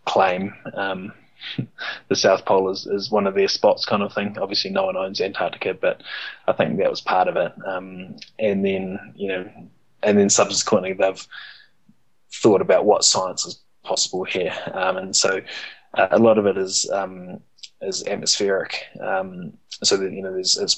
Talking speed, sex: 175 wpm, male